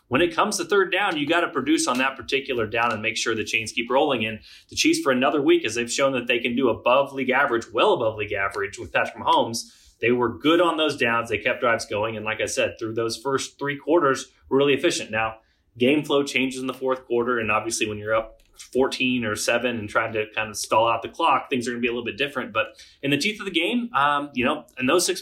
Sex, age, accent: male, 30-49, American